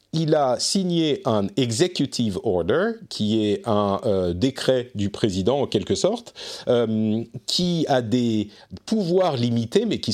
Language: French